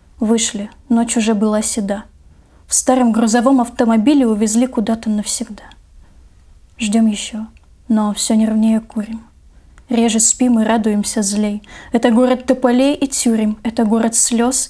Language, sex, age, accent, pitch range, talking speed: Russian, female, 10-29, native, 225-255 Hz, 125 wpm